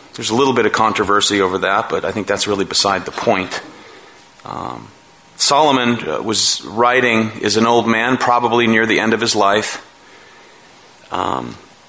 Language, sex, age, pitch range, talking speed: English, male, 30-49, 105-130 Hz, 165 wpm